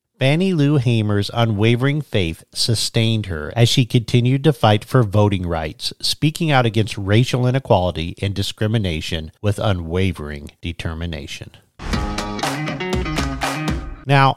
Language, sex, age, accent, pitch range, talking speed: English, male, 50-69, American, 100-130 Hz, 110 wpm